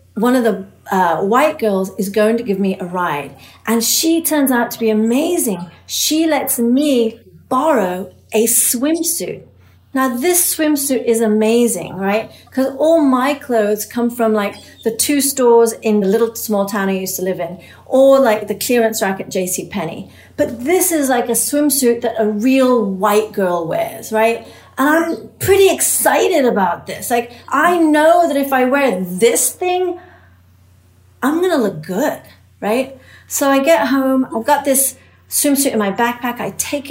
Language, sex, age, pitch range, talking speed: English, female, 40-59, 210-270 Hz, 170 wpm